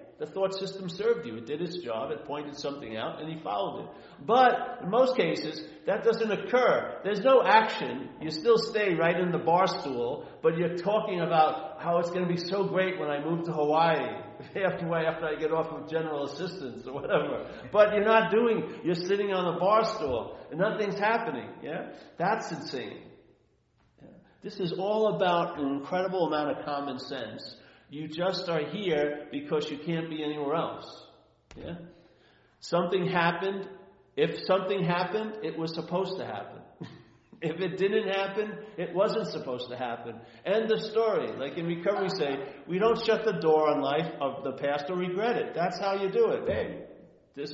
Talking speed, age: 180 wpm, 50-69